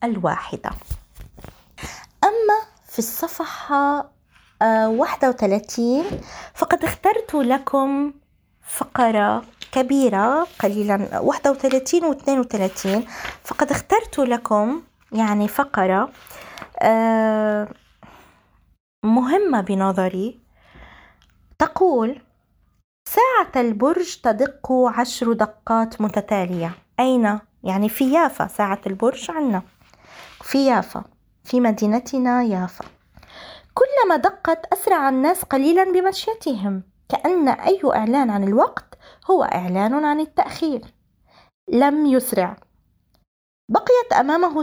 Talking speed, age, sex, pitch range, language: 80 wpm, 20-39, female, 210-315 Hz, Arabic